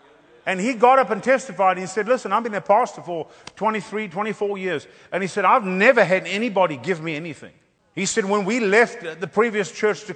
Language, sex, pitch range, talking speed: English, male, 170-210 Hz, 220 wpm